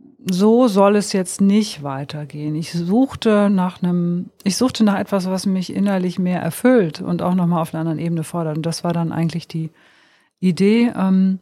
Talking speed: 185 wpm